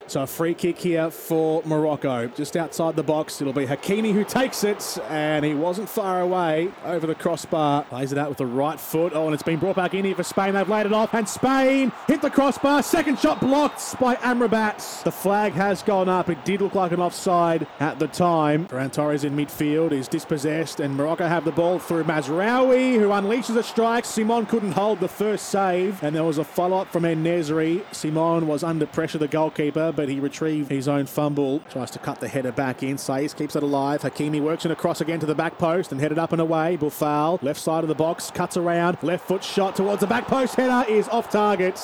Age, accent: 20-39, Australian